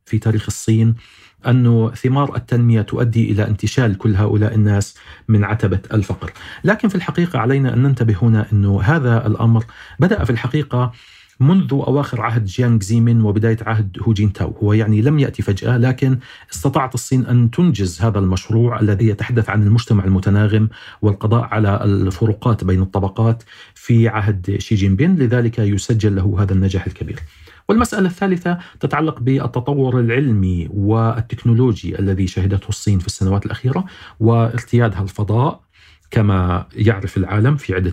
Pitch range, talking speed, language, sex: 100-125 Hz, 140 wpm, Arabic, male